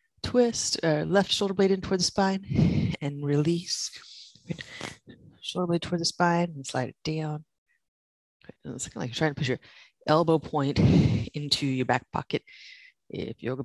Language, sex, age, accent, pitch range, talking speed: English, female, 30-49, American, 135-175 Hz, 155 wpm